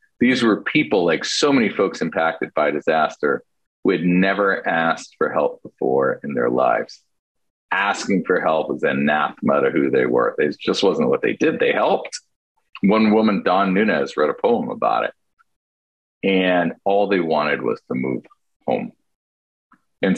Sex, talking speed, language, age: male, 170 wpm, English, 40-59